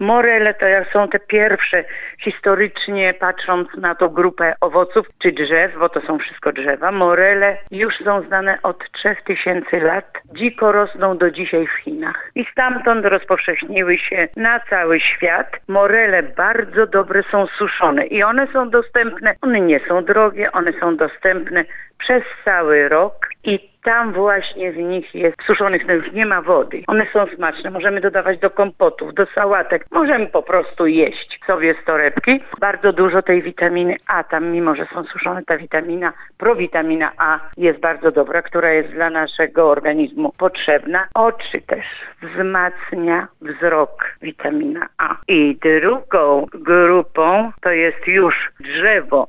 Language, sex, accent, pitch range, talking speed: Polish, female, native, 170-210 Hz, 150 wpm